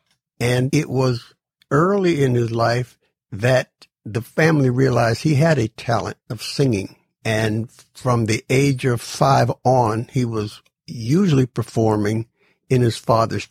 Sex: male